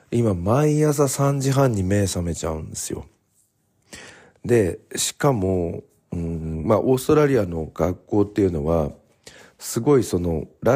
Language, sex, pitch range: Japanese, male, 80-130 Hz